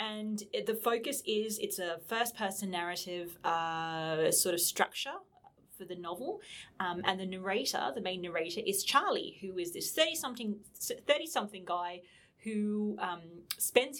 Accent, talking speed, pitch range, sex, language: Australian, 145 wpm, 175-255 Hz, female, English